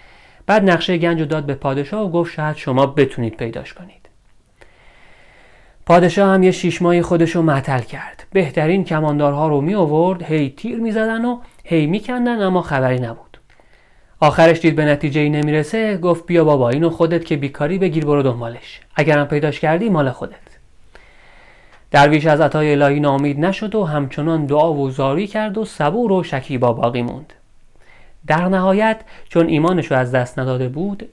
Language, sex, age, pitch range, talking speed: Persian, male, 30-49, 140-180 Hz, 165 wpm